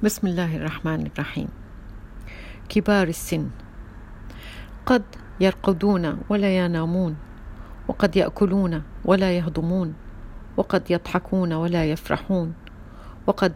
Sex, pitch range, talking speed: female, 155-185 Hz, 85 wpm